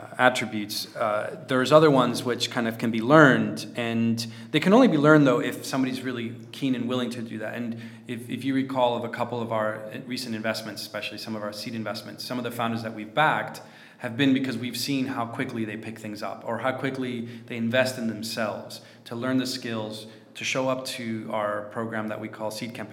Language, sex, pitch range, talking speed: English, male, 110-125 Hz, 220 wpm